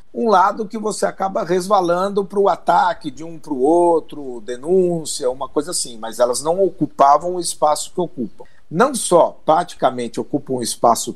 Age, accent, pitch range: 50-69, Brazilian, 140-180 Hz